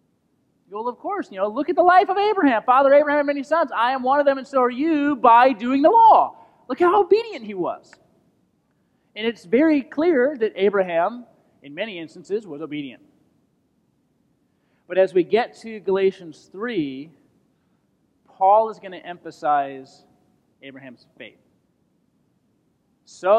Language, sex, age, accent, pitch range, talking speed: English, male, 30-49, American, 180-270 Hz, 150 wpm